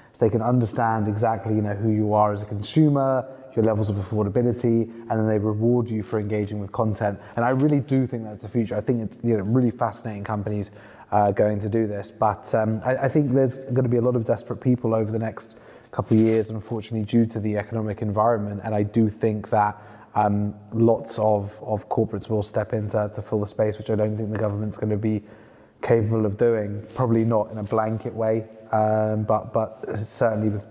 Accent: British